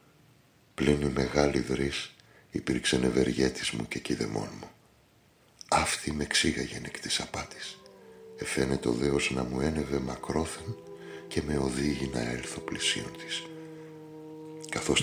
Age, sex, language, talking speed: 60-79, male, Greek, 115 wpm